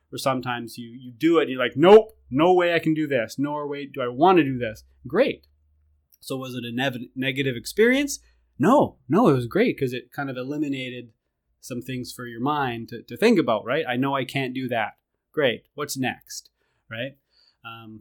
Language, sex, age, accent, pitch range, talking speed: English, male, 20-39, American, 120-150 Hz, 210 wpm